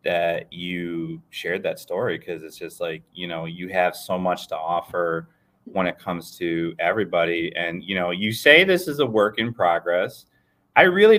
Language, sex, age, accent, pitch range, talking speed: English, male, 30-49, American, 105-150 Hz, 190 wpm